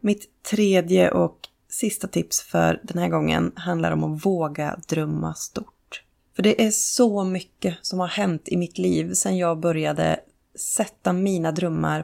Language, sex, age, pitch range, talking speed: Swedish, female, 20-39, 155-200 Hz, 160 wpm